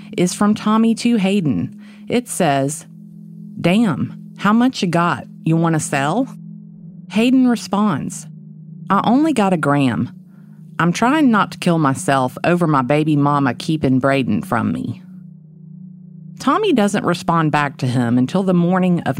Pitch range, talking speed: 145-195 Hz, 145 wpm